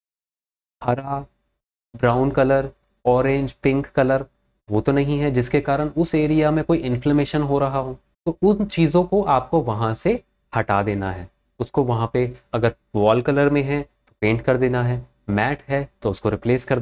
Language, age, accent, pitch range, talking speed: Hindi, 30-49, native, 120-170 Hz, 175 wpm